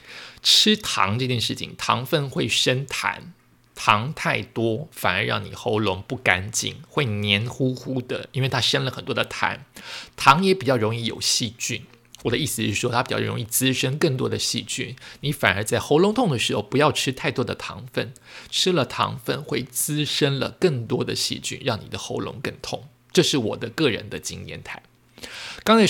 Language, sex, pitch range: Chinese, male, 115-150 Hz